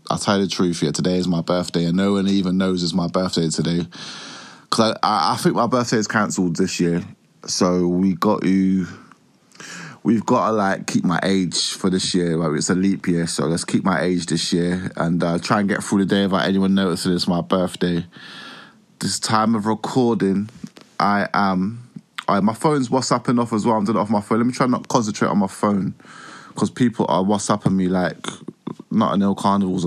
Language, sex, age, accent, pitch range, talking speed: English, male, 20-39, British, 90-110 Hz, 215 wpm